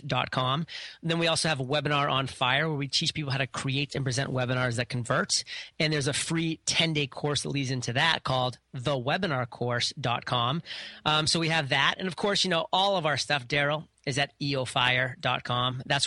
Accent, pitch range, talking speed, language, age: American, 130-160 Hz, 210 wpm, English, 30-49